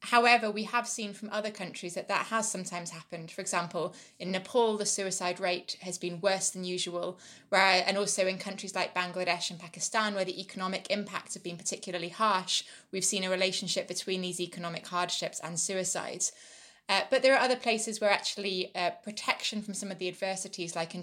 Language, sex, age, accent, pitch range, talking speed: English, female, 20-39, British, 180-205 Hz, 190 wpm